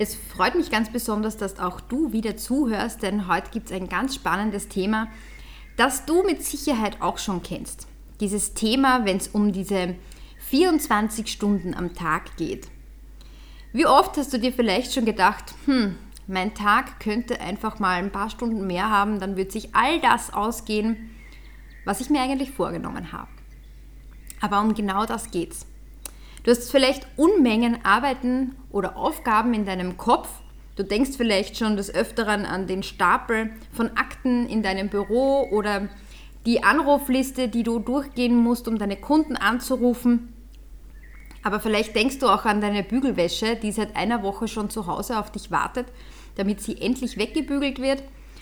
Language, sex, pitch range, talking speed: German, female, 200-250 Hz, 160 wpm